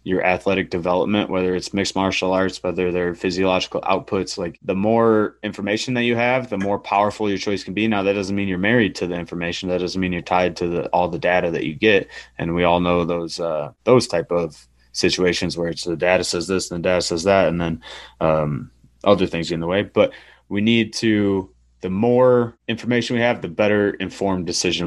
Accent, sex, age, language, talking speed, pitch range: American, male, 30-49, English, 215 wpm, 85-105 Hz